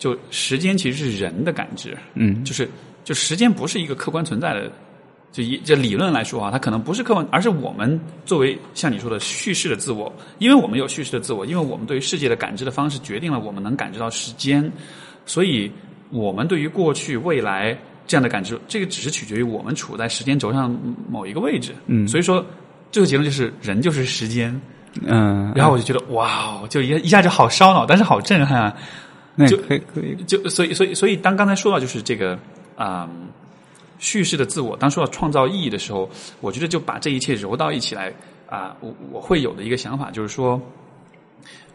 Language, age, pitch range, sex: Chinese, 20-39, 120-175 Hz, male